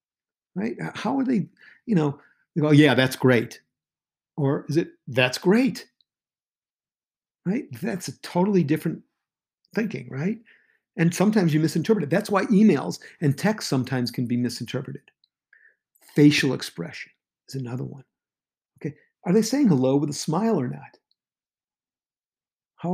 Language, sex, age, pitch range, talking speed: English, male, 50-69, 130-185 Hz, 140 wpm